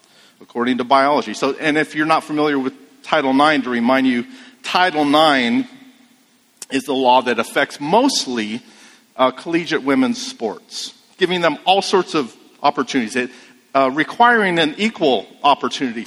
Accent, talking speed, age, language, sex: American, 145 wpm, 50-69, English, male